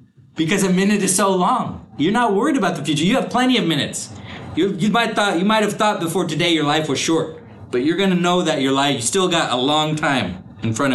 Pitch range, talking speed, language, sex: 125-170 Hz, 250 wpm, English, male